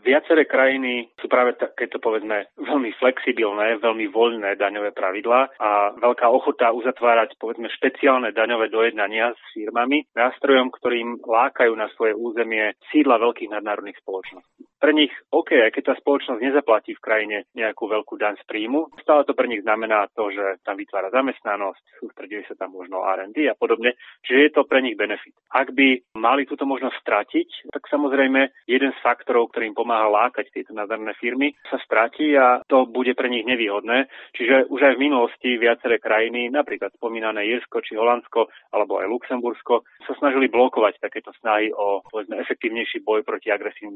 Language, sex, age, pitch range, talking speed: Slovak, male, 30-49, 110-130 Hz, 155 wpm